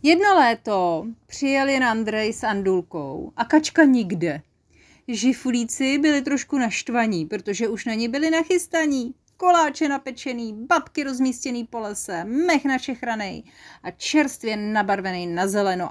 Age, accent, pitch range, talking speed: 30-49, native, 185-265 Hz, 125 wpm